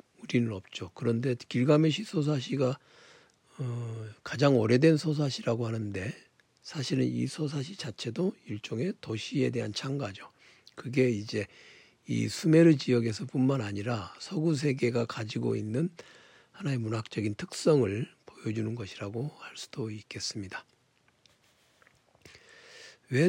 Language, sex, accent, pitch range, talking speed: English, male, Korean, 110-140 Hz, 95 wpm